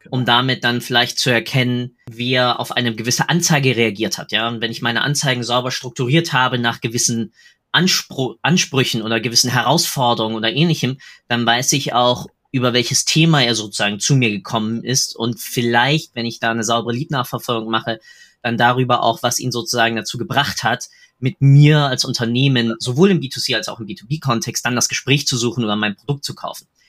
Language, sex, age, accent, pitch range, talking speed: German, male, 20-39, German, 120-155 Hz, 185 wpm